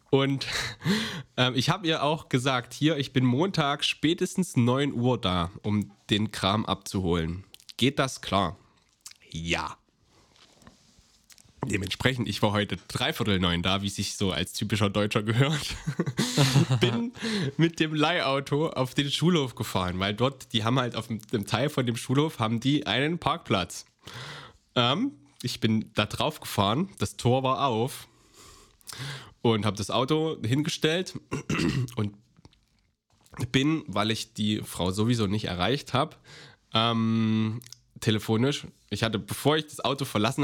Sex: male